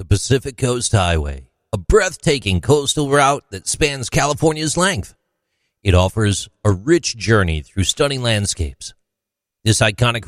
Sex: male